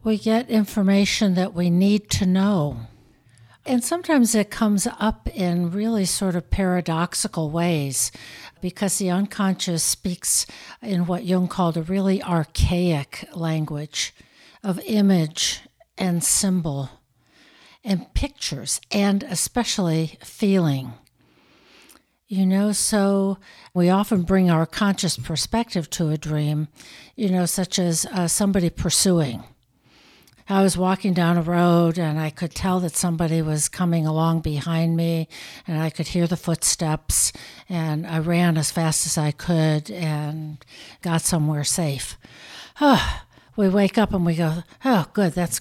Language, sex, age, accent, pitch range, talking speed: English, female, 60-79, American, 160-195 Hz, 135 wpm